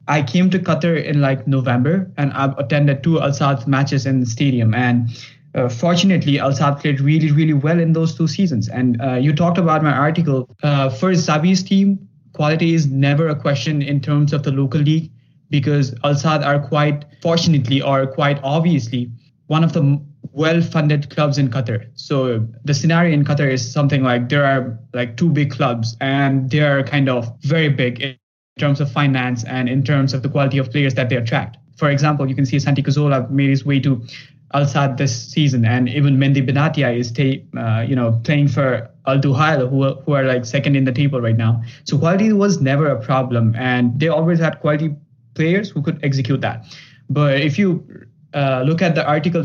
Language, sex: English, male